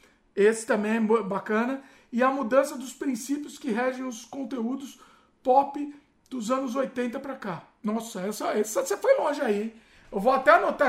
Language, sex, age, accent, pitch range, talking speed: Portuguese, male, 50-69, Brazilian, 245-320 Hz, 160 wpm